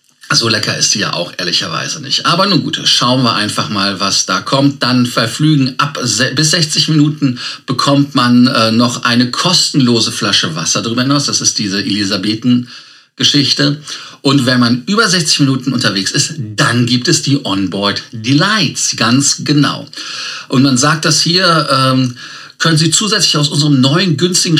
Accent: German